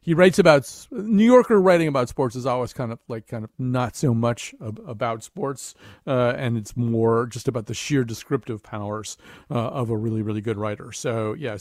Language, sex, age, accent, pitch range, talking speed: English, male, 40-59, American, 115-155 Hz, 210 wpm